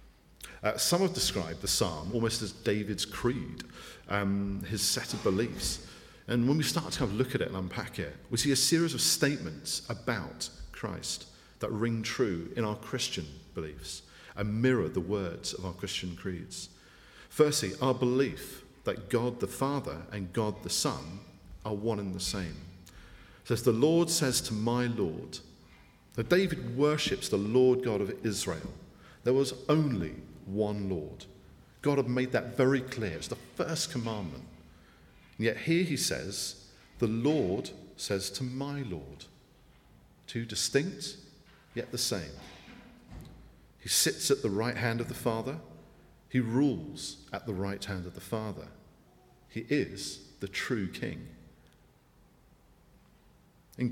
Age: 40-59